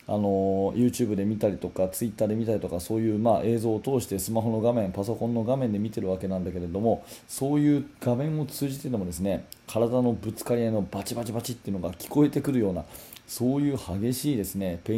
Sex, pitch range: male, 100-125 Hz